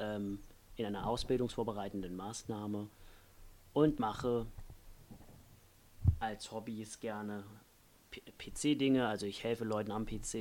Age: 30-49